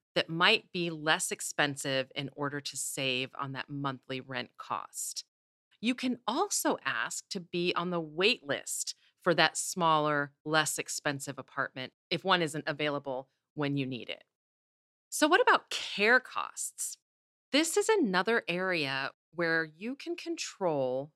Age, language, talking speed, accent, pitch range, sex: 40-59, English, 145 wpm, American, 150-230 Hz, female